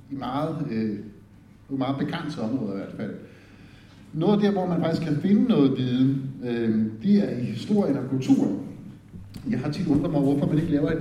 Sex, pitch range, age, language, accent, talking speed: male, 130-175 Hz, 60-79, English, Danish, 185 wpm